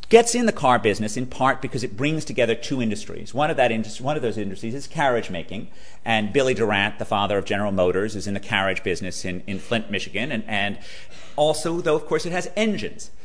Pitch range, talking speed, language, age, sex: 105-130 Hz, 225 wpm, English, 40-59, male